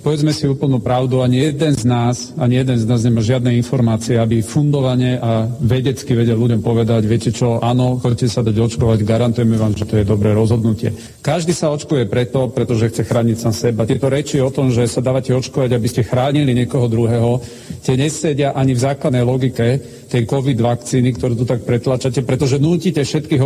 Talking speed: 190 wpm